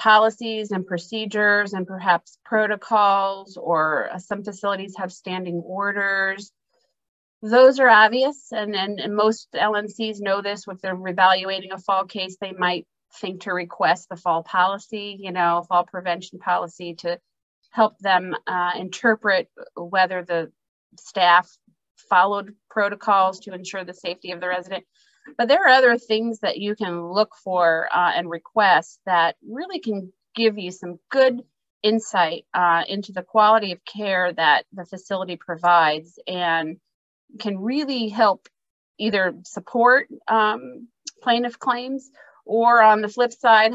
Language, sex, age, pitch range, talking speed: English, female, 30-49, 180-220 Hz, 140 wpm